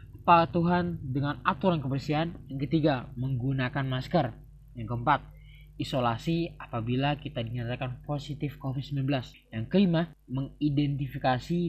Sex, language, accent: male, Indonesian, native